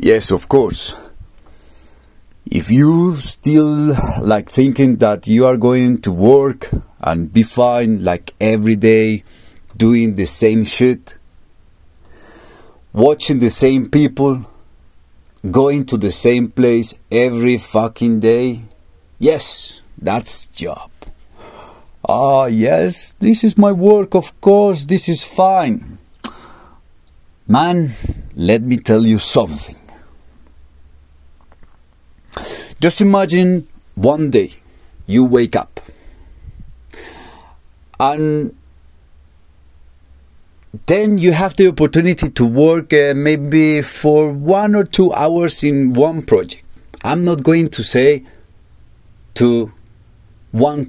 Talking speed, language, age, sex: 105 wpm, Spanish, 40-59, male